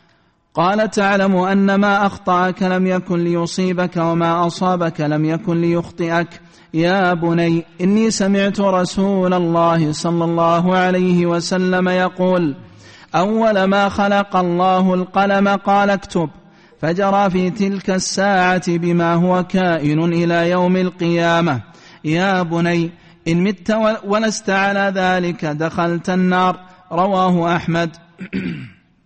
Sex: male